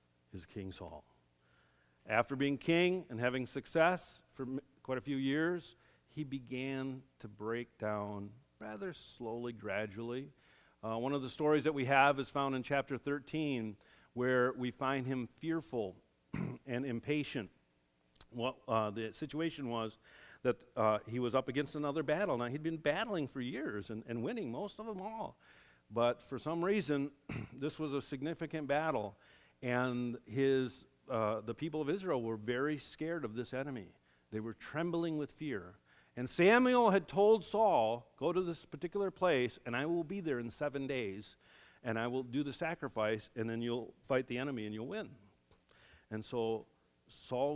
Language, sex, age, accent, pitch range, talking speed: English, male, 50-69, American, 115-150 Hz, 165 wpm